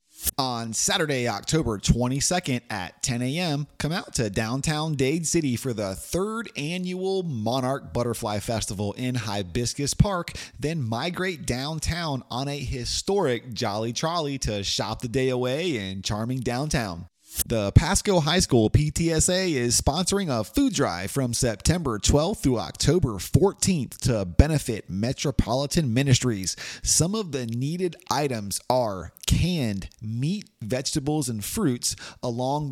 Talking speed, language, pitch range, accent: 130 wpm, English, 110-160 Hz, American